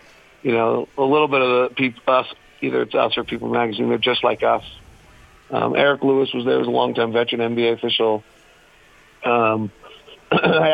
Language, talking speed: English, 180 wpm